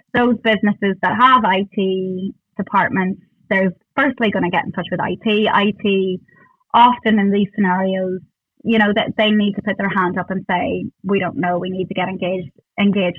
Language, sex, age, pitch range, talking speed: English, female, 20-39, 190-220 Hz, 185 wpm